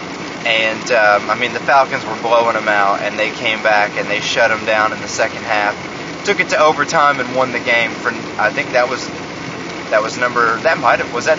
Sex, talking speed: male, 230 wpm